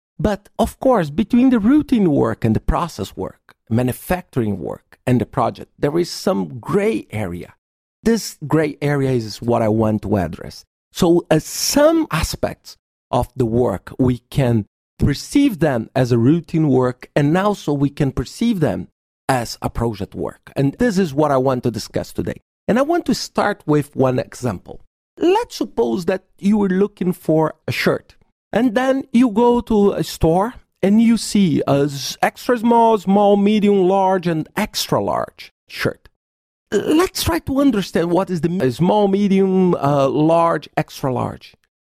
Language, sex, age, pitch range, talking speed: English, male, 50-69, 140-235 Hz, 165 wpm